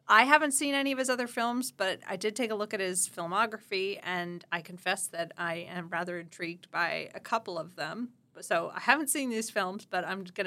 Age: 30-49